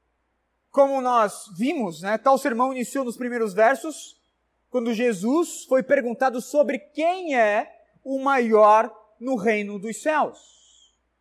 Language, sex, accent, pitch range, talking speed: Portuguese, male, Brazilian, 230-290 Hz, 125 wpm